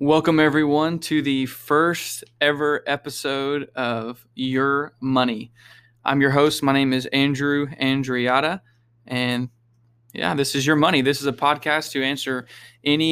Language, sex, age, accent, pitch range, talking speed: English, male, 20-39, American, 125-150 Hz, 140 wpm